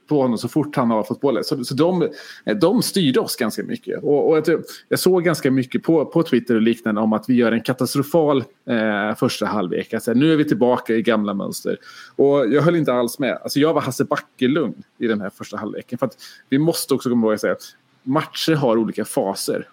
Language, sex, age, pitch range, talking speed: Swedish, male, 30-49, 115-150 Hz, 230 wpm